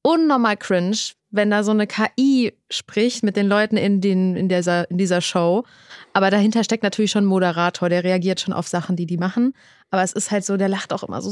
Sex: female